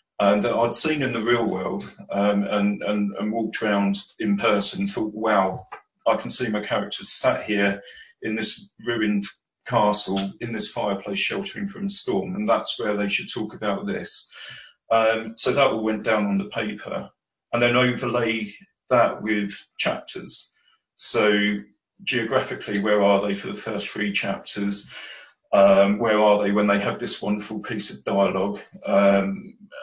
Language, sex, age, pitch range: English, male, 40-59, 105-130 Hz